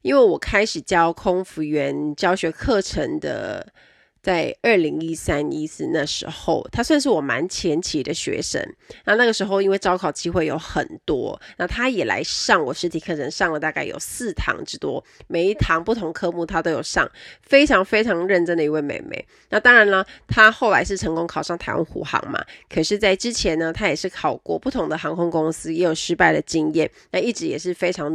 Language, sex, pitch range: Chinese, female, 160-195 Hz